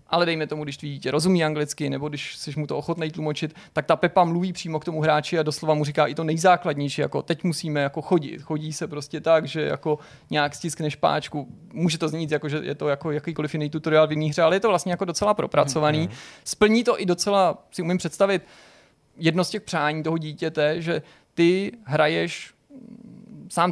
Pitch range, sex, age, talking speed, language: 150-175 Hz, male, 30-49, 210 wpm, Czech